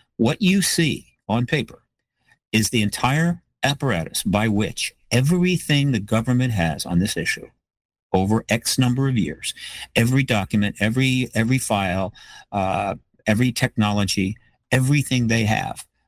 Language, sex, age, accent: English, male, 50-69, American